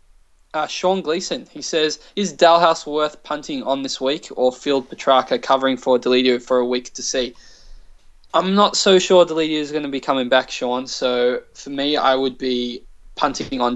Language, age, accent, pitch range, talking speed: English, 20-39, Australian, 125-155 Hz, 190 wpm